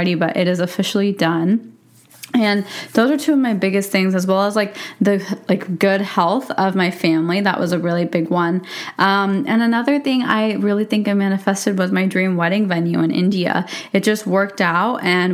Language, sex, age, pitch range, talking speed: English, female, 20-39, 180-205 Hz, 200 wpm